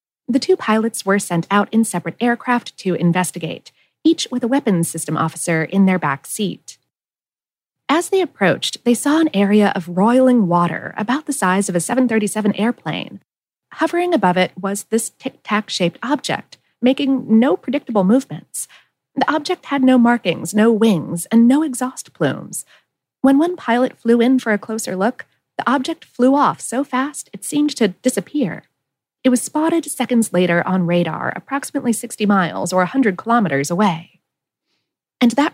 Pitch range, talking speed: 185-270 Hz, 160 wpm